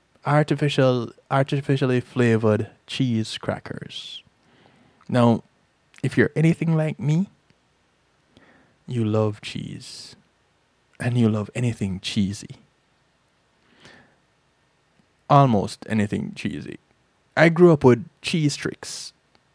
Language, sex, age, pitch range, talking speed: English, male, 20-39, 110-140 Hz, 85 wpm